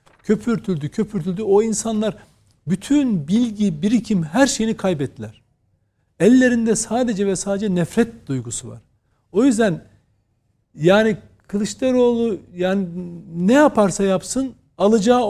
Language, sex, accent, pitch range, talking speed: Turkish, male, native, 150-225 Hz, 100 wpm